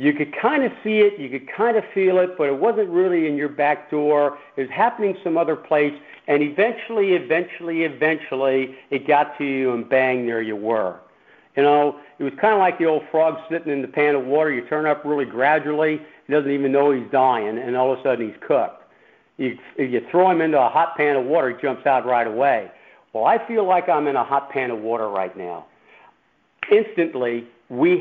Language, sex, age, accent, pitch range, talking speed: English, male, 60-79, American, 130-165 Hz, 220 wpm